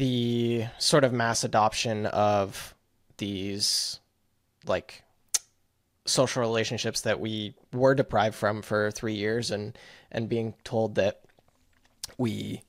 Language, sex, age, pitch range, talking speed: English, male, 20-39, 110-130 Hz, 115 wpm